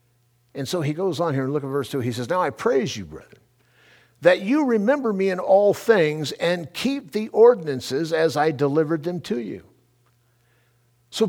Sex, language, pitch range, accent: male, English, 120-155 Hz, American